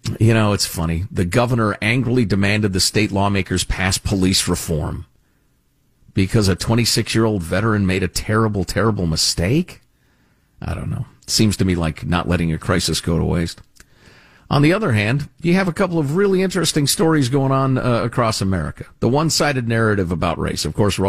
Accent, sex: American, male